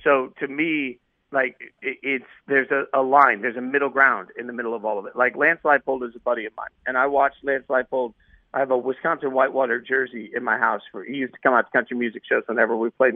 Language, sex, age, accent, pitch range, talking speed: English, male, 50-69, American, 125-145 Hz, 250 wpm